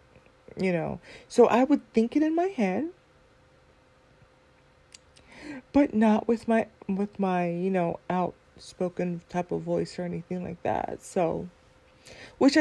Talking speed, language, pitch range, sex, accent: 135 wpm, English, 175-210 Hz, female, American